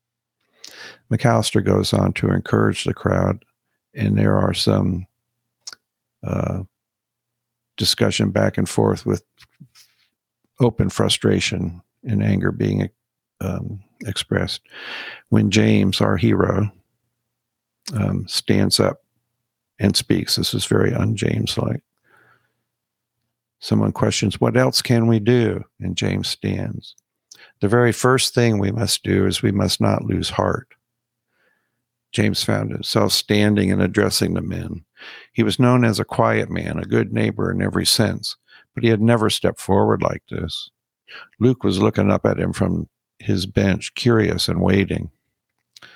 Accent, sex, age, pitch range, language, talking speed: American, male, 50-69, 100-115 Hz, English, 130 wpm